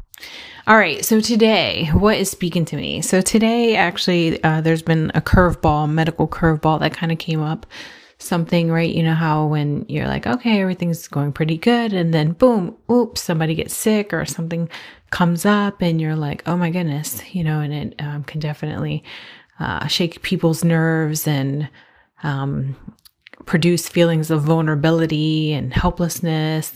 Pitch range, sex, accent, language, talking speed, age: 150-175 Hz, female, American, English, 165 wpm, 30-49